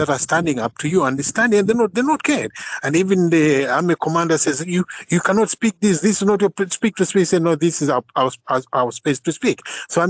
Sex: male